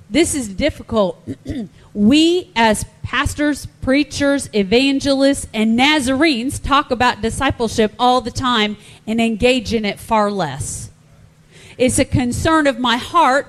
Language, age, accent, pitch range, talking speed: English, 40-59, American, 200-260 Hz, 125 wpm